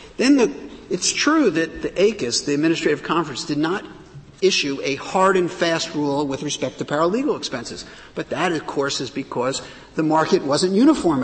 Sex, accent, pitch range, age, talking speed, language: male, American, 145-205 Hz, 50-69, 175 wpm, English